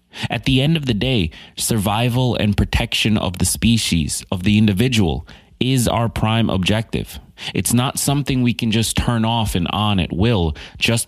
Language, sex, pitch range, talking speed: English, male, 85-115 Hz, 175 wpm